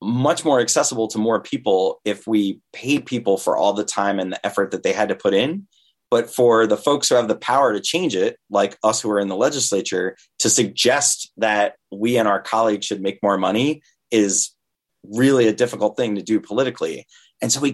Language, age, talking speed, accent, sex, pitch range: English, 30-49, 215 wpm, American, male, 100-120 Hz